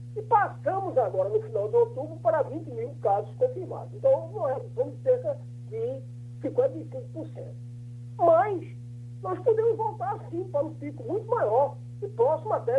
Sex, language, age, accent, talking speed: male, Portuguese, 50-69, Brazilian, 145 wpm